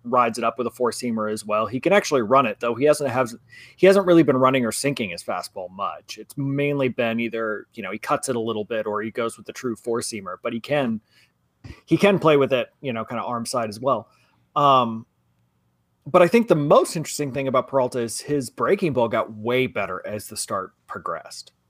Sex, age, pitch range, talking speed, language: male, 30-49, 115-150 Hz, 230 wpm, English